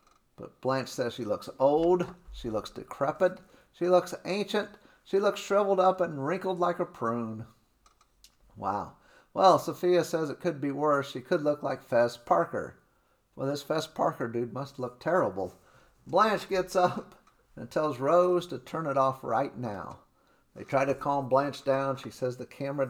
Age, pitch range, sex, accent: 50-69, 130-175 Hz, male, American